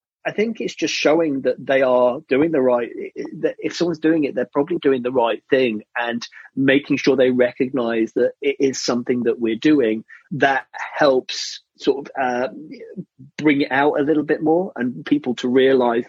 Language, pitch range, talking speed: English, 125-150 Hz, 185 wpm